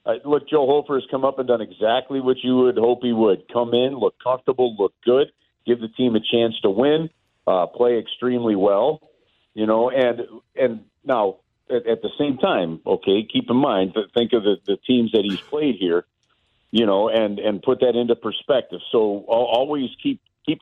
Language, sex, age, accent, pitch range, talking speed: English, male, 50-69, American, 120-165 Hz, 200 wpm